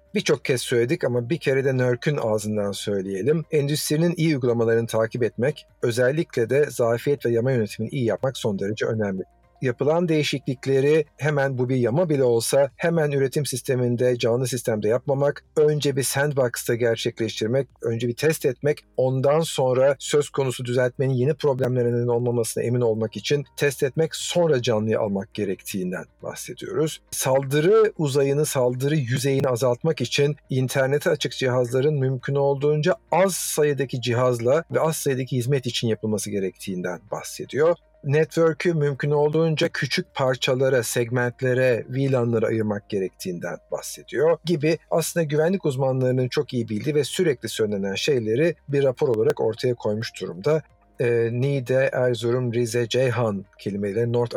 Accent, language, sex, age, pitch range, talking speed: native, Turkish, male, 50-69, 115-150 Hz, 135 wpm